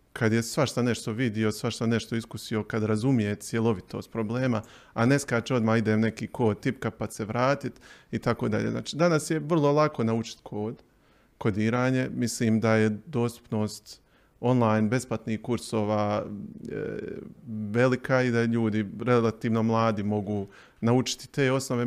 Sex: male